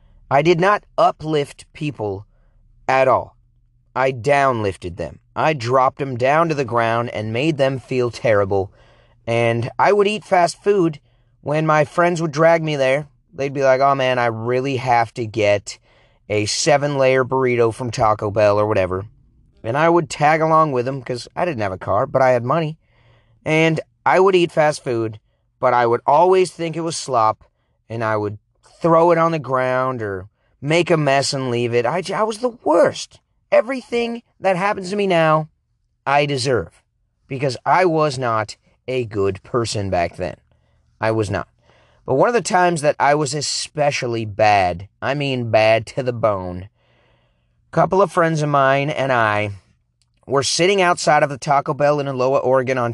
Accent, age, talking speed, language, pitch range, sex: American, 30-49, 180 wpm, English, 115-155 Hz, male